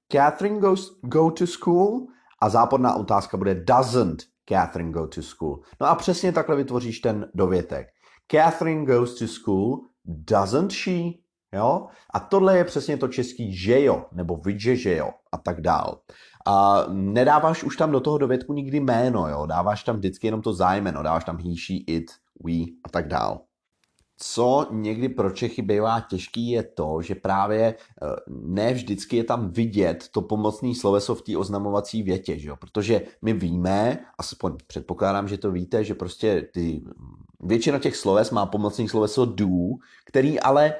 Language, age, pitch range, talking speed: Czech, 30-49, 95-140 Hz, 160 wpm